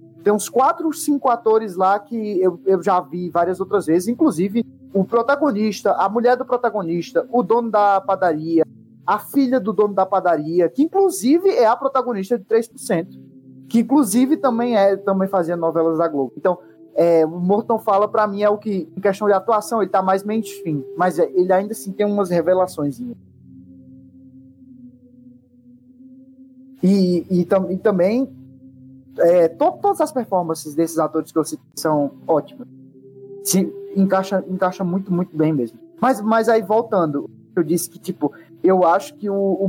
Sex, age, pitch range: male, 20-39, 165-225 Hz